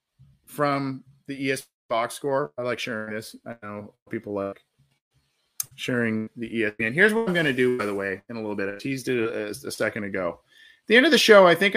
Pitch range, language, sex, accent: 125-170 Hz, English, male, American